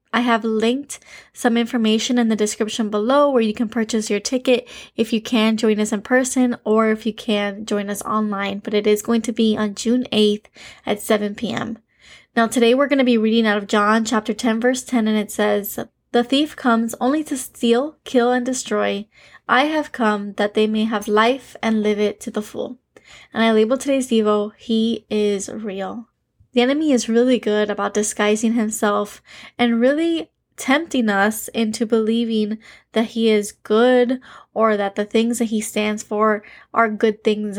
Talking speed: 190 wpm